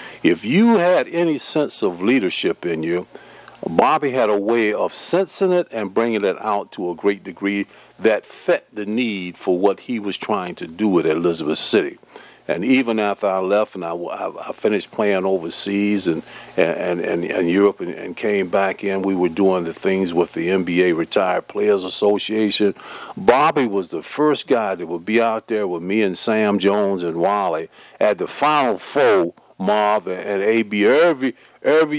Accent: American